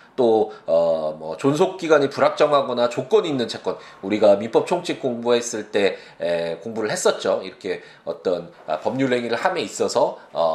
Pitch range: 115-190 Hz